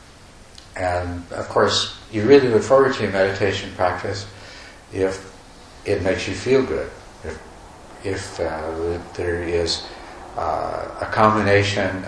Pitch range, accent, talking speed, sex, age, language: 90-105 Hz, American, 125 wpm, male, 70-89, English